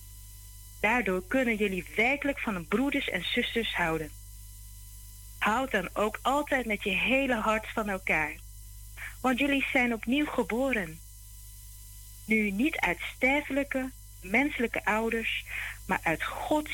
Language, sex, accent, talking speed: Dutch, female, Dutch, 120 wpm